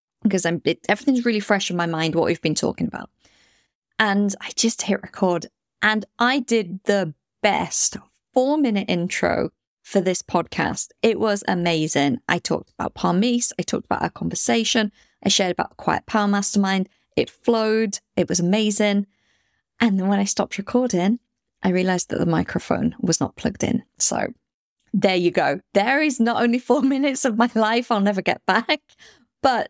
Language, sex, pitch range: English, female, 180-235 Hz